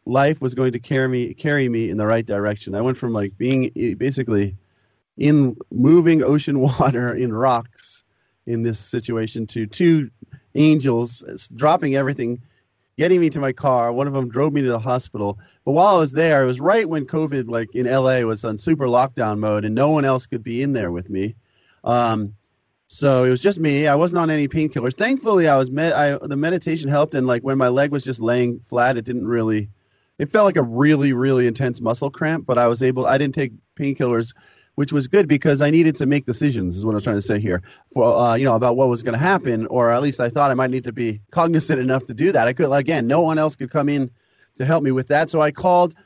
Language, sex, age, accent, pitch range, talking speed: English, male, 30-49, American, 120-150 Hz, 235 wpm